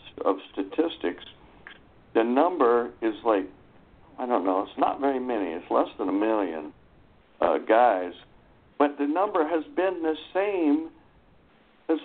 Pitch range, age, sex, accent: 120-185 Hz, 60-79, male, American